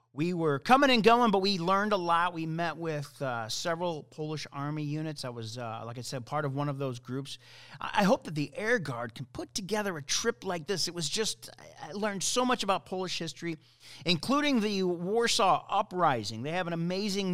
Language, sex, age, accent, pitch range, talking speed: English, male, 40-59, American, 135-195 Hz, 220 wpm